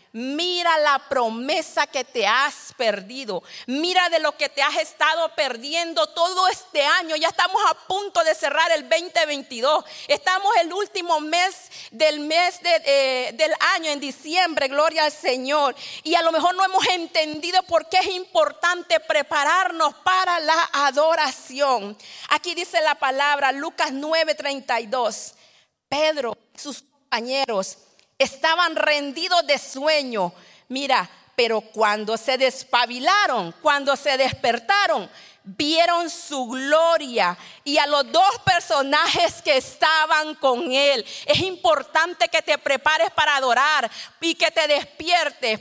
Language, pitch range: Spanish, 280-345 Hz